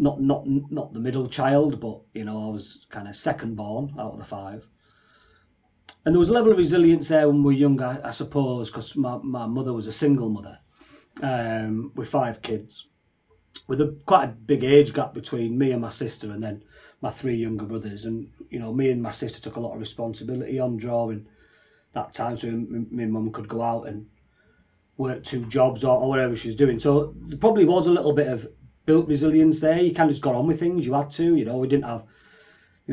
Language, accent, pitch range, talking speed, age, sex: English, British, 115-145 Hz, 230 wpm, 40-59, male